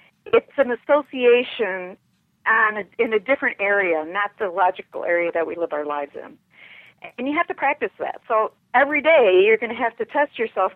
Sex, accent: female, American